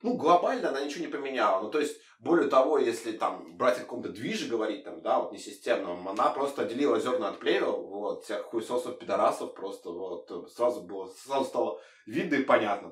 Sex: male